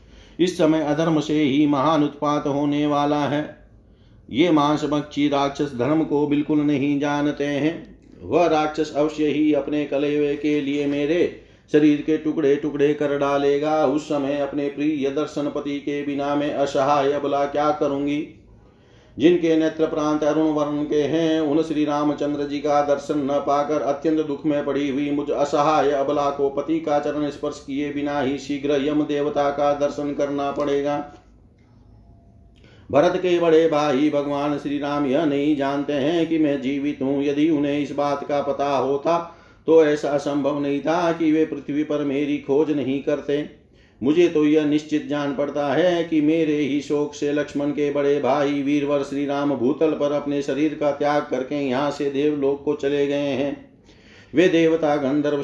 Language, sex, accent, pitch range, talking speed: Hindi, male, native, 140-150 Hz, 170 wpm